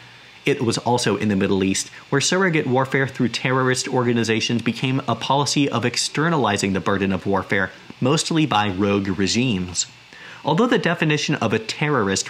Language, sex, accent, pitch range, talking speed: English, male, American, 105-135 Hz, 155 wpm